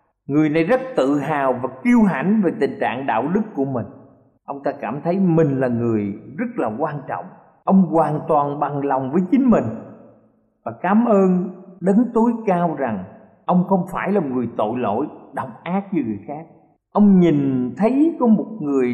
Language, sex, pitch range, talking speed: Vietnamese, male, 135-215 Hz, 185 wpm